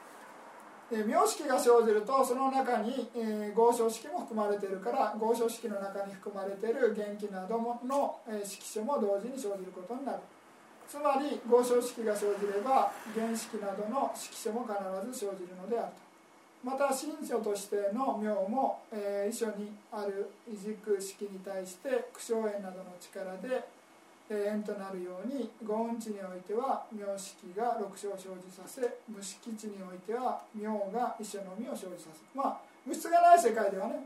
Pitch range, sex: 200-245 Hz, male